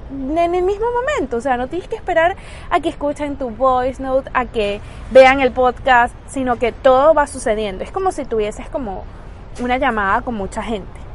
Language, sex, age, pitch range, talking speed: Spanish, female, 20-39, 225-285 Hz, 195 wpm